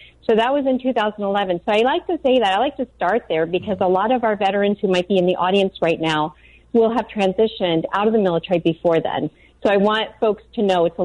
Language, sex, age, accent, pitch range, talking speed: English, female, 40-59, American, 180-230 Hz, 255 wpm